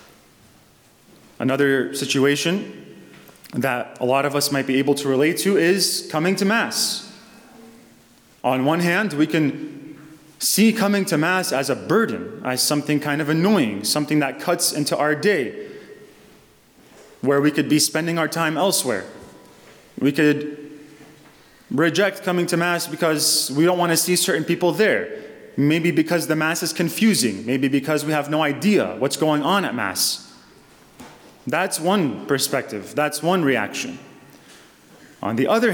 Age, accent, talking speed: 30-49, American, 150 wpm